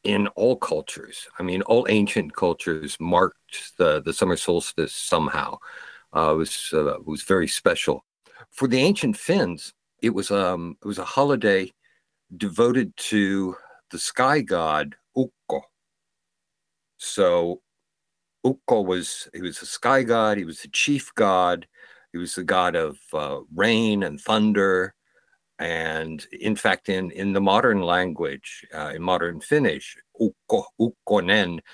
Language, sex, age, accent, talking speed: Finnish, male, 60-79, American, 140 wpm